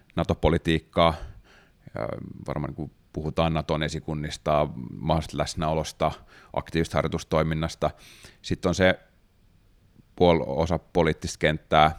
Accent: native